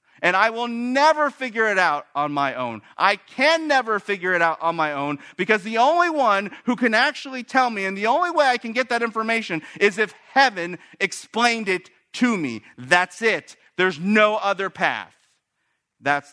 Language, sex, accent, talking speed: English, male, American, 185 wpm